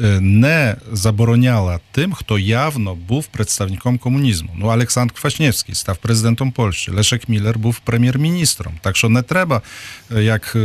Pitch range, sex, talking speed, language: 100-120 Hz, male, 135 wpm, Ukrainian